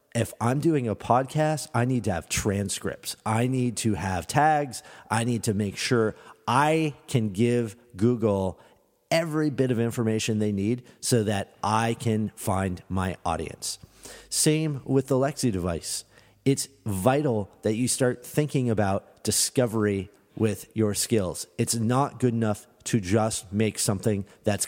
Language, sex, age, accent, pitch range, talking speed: English, male, 40-59, American, 105-130 Hz, 150 wpm